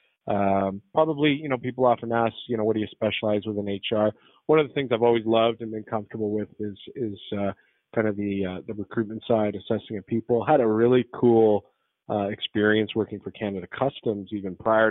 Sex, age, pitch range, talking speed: male, 30-49, 95-110 Hz, 210 wpm